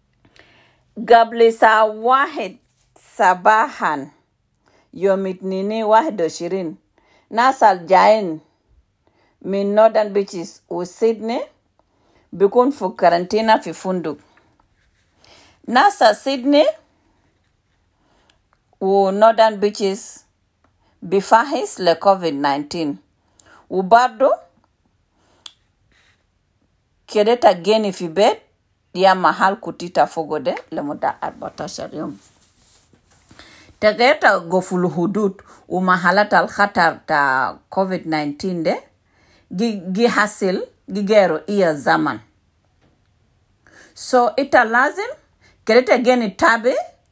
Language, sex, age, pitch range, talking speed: English, female, 50-69, 140-220 Hz, 70 wpm